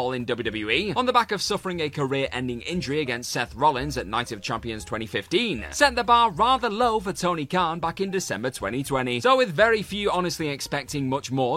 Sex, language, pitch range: male, English, 130-205 Hz